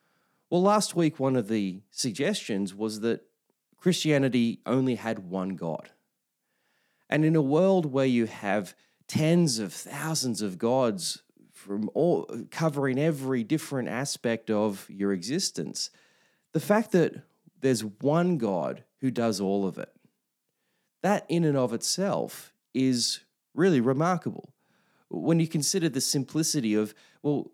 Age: 30-49